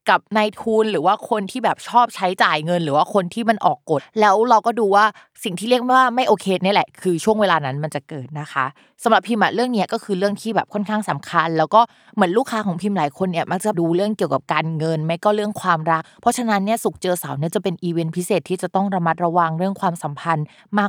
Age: 20-39